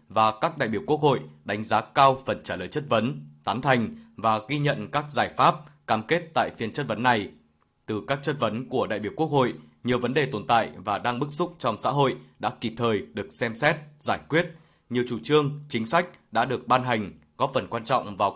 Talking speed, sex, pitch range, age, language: 235 wpm, male, 110-145 Hz, 20-39, Vietnamese